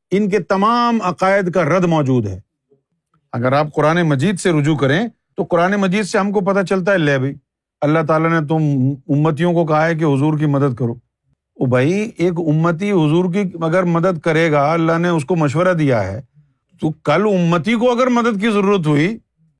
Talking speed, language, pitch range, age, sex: 195 wpm, Urdu, 160-230 Hz, 50-69, male